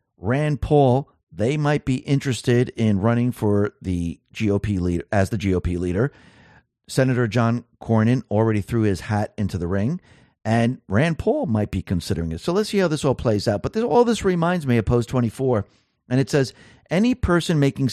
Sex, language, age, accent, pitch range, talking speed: male, English, 50-69, American, 110-140 Hz, 185 wpm